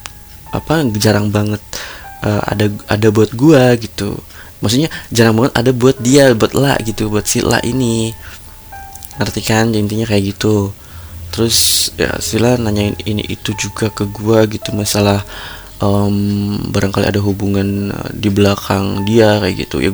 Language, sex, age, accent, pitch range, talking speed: Indonesian, male, 20-39, native, 100-115 Hz, 140 wpm